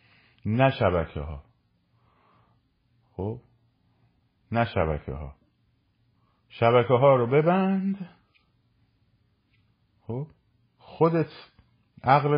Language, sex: Persian, male